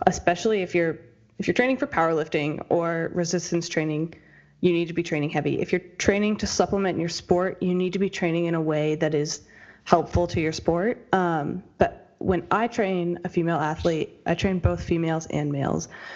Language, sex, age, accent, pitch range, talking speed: English, female, 20-39, American, 160-185 Hz, 195 wpm